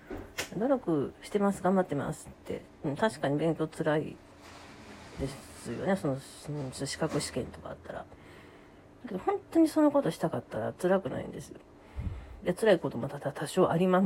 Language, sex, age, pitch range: Japanese, female, 40-59, 150-225 Hz